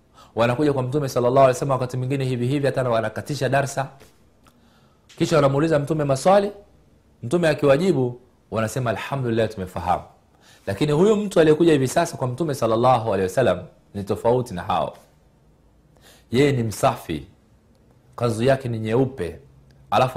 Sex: male